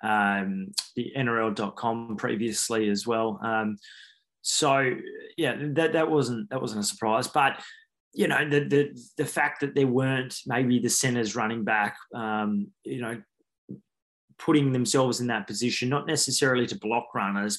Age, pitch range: 20-39, 110-130 Hz